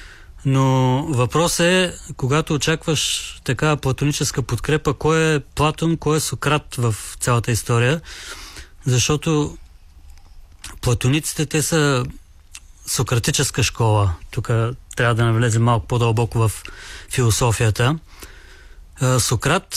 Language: Bulgarian